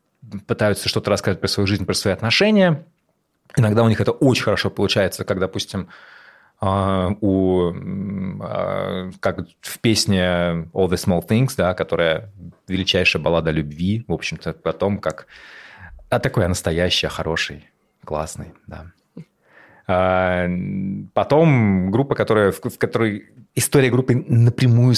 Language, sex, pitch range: Russian, male, 90-105 Hz